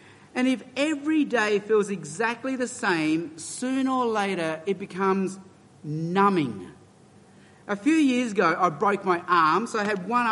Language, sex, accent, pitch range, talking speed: English, male, Australian, 170-240 Hz, 150 wpm